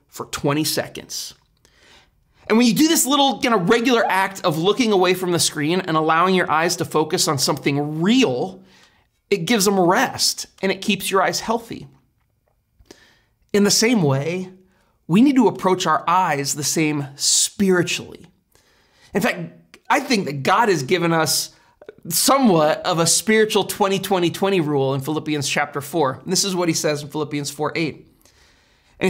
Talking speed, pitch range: 170 wpm, 155-210 Hz